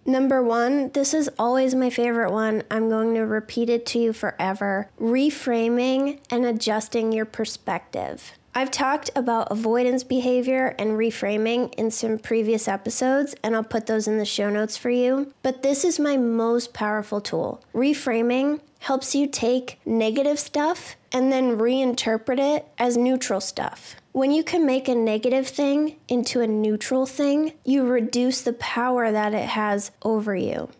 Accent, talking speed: American, 160 wpm